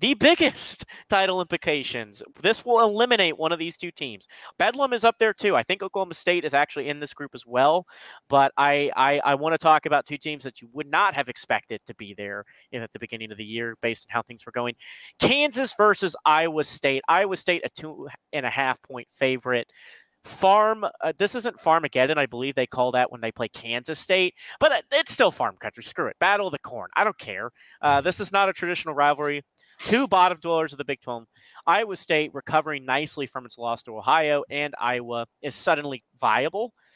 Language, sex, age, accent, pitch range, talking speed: English, male, 30-49, American, 120-170 Hz, 205 wpm